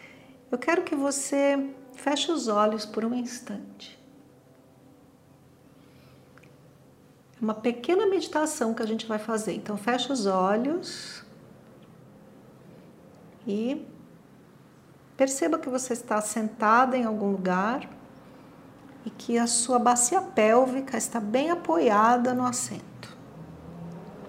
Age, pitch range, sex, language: 50-69, 215-265 Hz, female, Portuguese